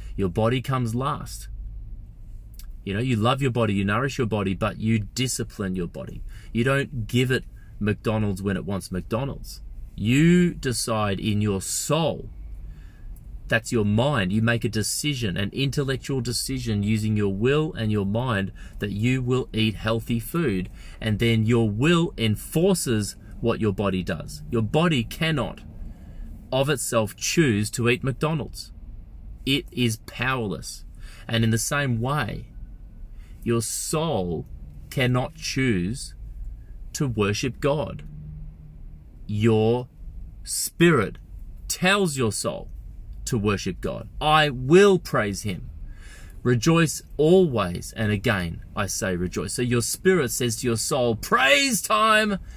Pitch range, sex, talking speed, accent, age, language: 100-130 Hz, male, 130 wpm, Australian, 30-49, English